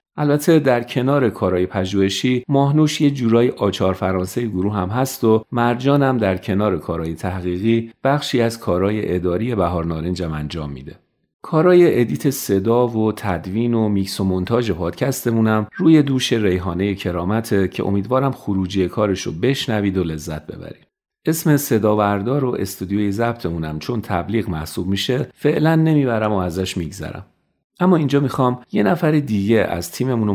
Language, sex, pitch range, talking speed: Persian, male, 90-125 Hz, 135 wpm